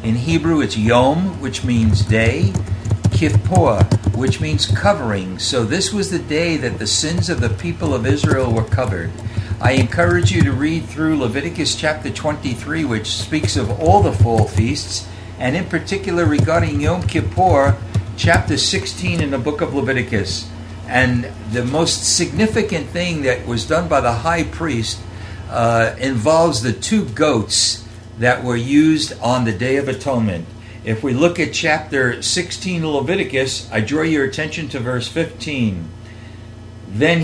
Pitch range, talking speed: 105-155 Hz, 155 wpm